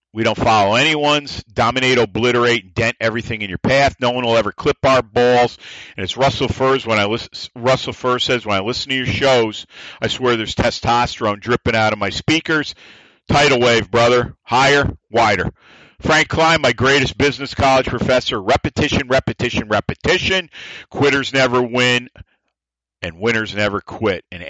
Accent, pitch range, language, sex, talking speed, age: American, 105-130 Hz, English, male, 160 wpm, 50-69